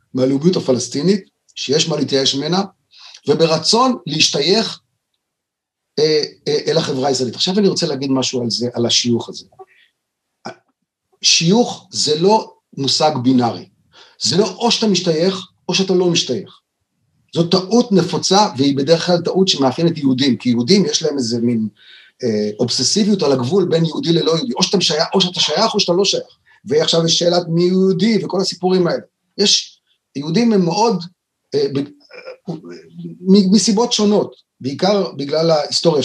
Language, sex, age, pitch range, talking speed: Hebrew, male, 40-59, 150-205 Hz, 145 wpm